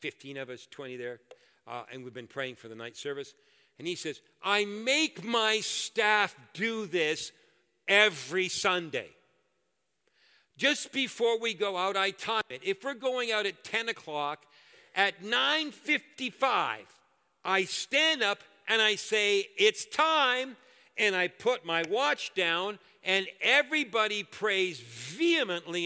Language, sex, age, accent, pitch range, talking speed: English, male, 50-69, American, 180-265 Hz, 140 wpm